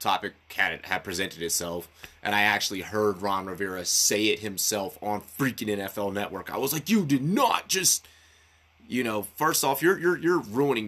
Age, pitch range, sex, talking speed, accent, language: 30-49, 90-120 Hz, male, 180 wpm, American, English